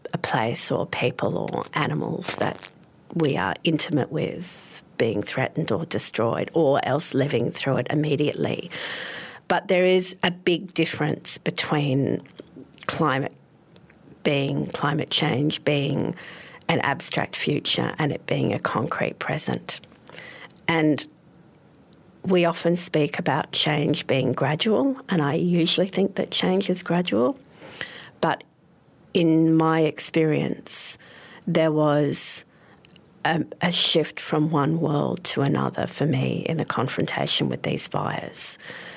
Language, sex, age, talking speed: English, female, 50-69, 125 wpm